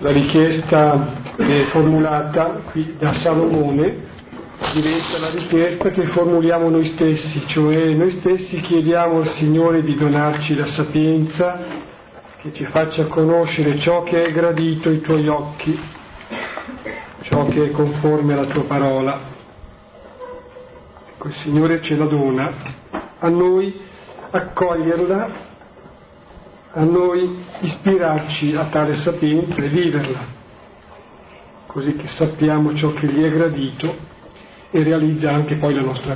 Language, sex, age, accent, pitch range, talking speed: Italian, male, 50-69, native, 150-175 Hz, 120 wpm